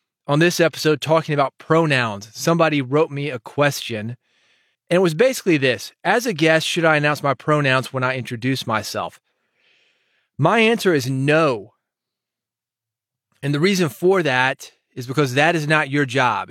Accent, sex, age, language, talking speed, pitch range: American, male, 30-49, English, 160 wpm, 130-155 Hz